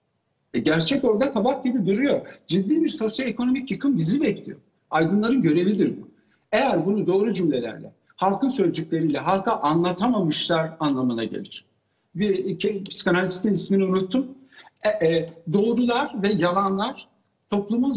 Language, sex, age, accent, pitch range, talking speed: Turkish, male, 60-79, native, 175-240 Hz, 115 wpm